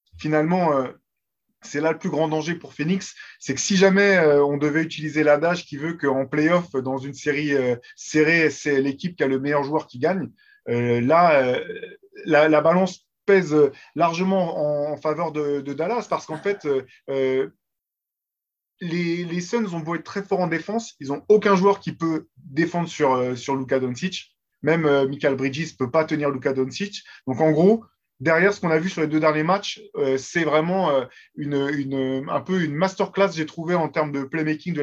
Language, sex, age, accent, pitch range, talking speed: French, male, 20-39, French, 140-175 Hz, 200 wpm